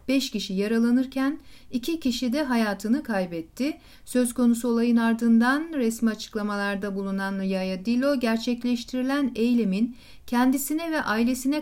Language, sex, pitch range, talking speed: Turkish, female, 205-255 Hz, 115 wpm